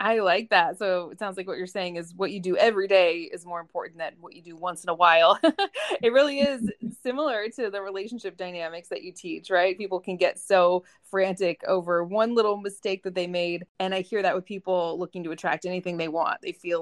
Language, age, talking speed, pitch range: English, 20-39, 230 wpm, 185-255 Hz